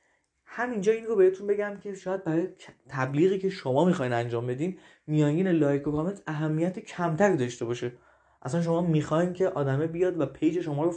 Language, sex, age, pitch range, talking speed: Persian, male, 20-39, 135-195 Hz, 175 wpm